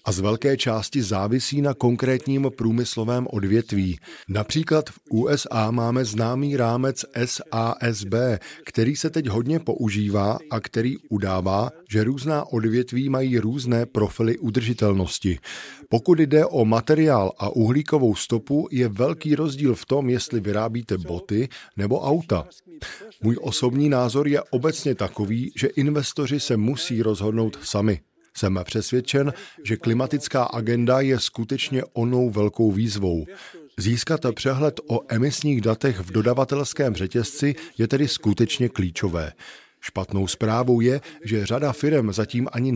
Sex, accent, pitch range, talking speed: male, native, 110-135 Hz, 125 wpm